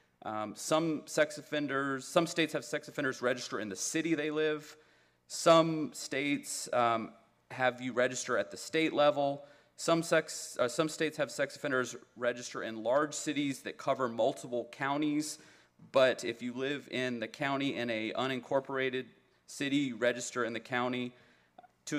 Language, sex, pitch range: English, male, 115-145 Hz